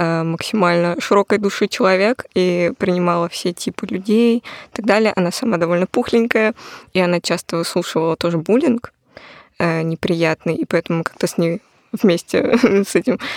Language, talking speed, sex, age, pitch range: Russian, 150 wpm, female, 20-39, 175-215 Hz